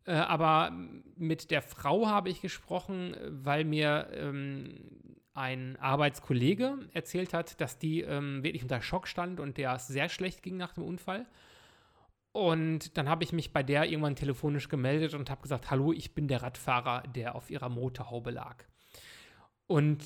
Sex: male